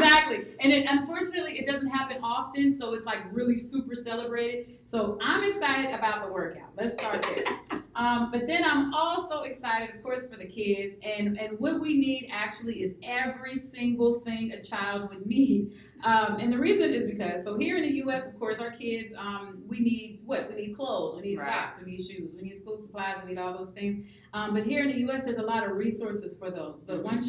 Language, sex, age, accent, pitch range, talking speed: English, female, 30-49, American, 200-240 Hz, 220 wpm